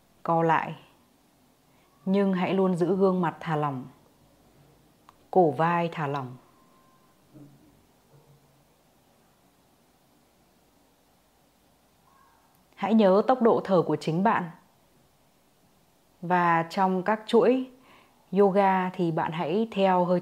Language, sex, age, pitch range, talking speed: Vietnamese, female, 20-39, 170-205 Hz, 95 wpm